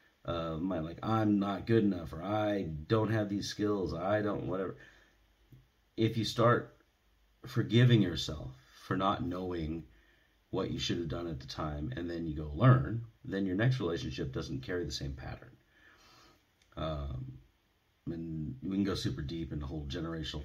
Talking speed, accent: 165 wpm, American